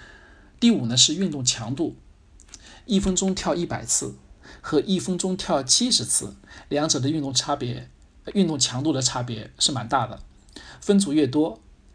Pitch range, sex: 125-160 Hz, male